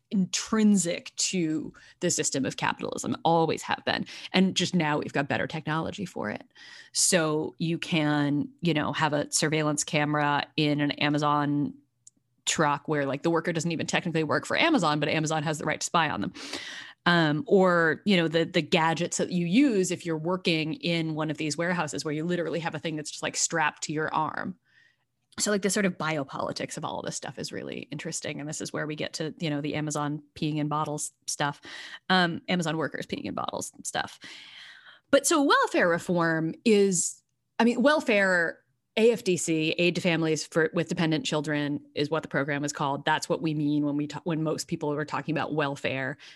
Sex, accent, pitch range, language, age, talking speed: female, American, 150-180 Hz, English, 20-39, 200 wpm